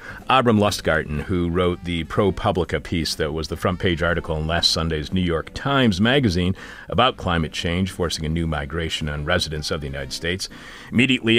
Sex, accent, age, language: male, American, 40-59, English